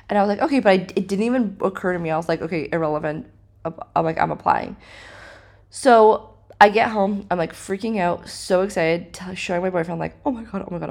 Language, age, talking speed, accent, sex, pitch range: English, 20-39, 235 wpm, American, female, 150-205 Hz